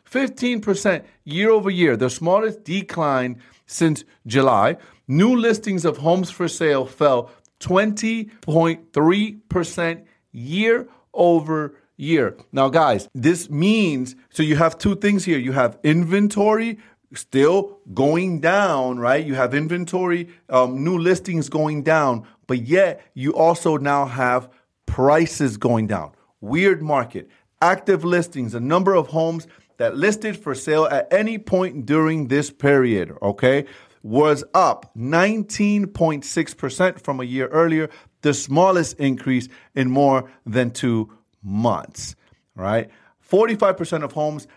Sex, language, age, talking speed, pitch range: male, English, 40-59, 125 wpm, 130-180 Hz